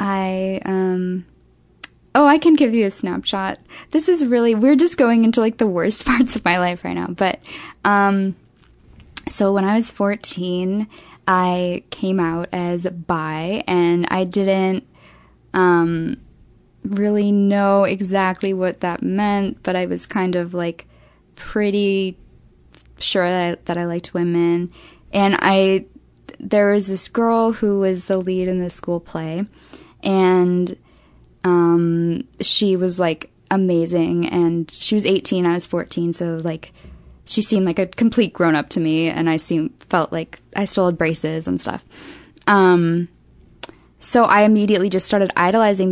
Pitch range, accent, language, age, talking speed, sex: 175-210 Hz, American, English, 10-29, 150 wpm, female